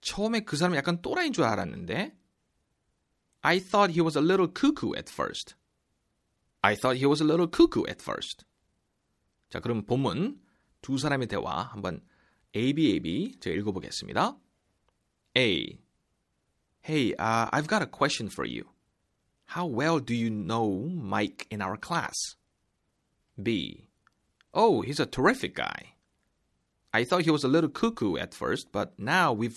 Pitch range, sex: 110-165 Hz, male